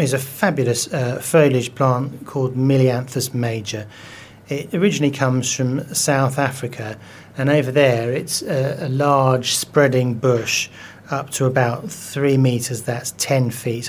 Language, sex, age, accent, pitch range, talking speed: English, male, 30-49, British, 115-140 Hz, 140 wpm